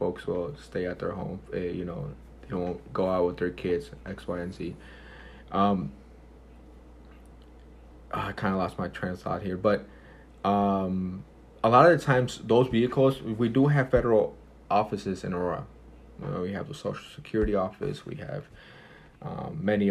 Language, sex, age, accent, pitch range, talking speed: English, male, 20-39, American, 90-100 Hz, 170 wpm